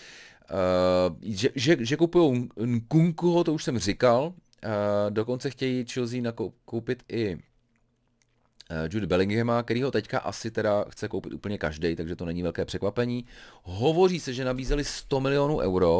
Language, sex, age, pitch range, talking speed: Czech, male, 30-49, 85-120 Hz, 155 wpm